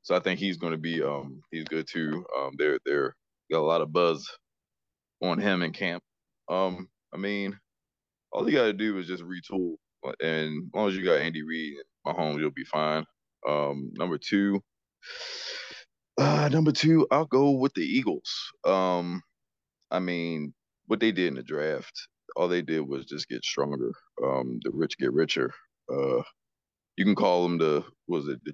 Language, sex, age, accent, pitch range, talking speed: English, male, 20-39, American, 80-95 Hz, 185 wpm